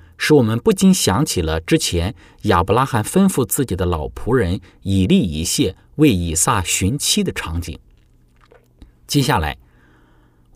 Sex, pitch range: male, 85-120 Hz